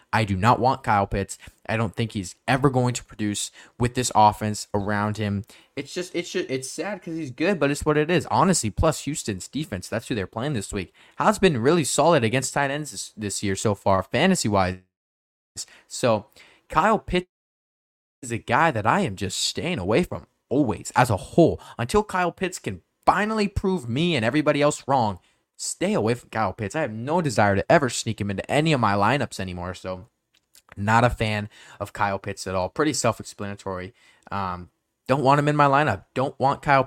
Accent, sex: American, male